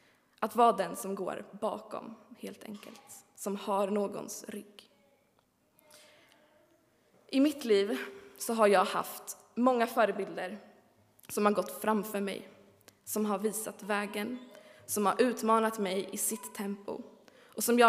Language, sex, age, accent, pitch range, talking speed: Swedish, female, 20-39, native, 200-235 Hz, 135 wpm